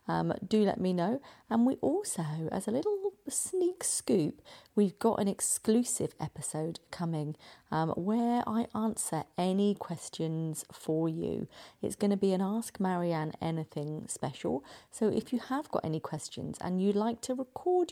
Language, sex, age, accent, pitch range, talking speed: English, female, 30-49, British, 160-220 Hz, 160 wpm